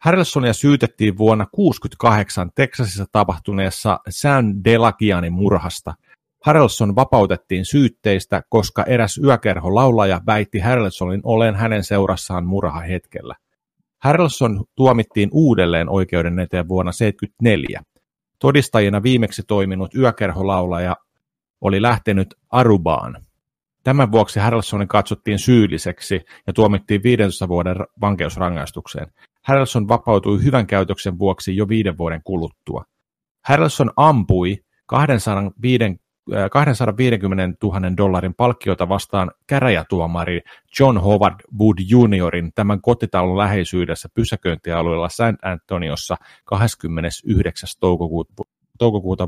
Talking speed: 90 wpm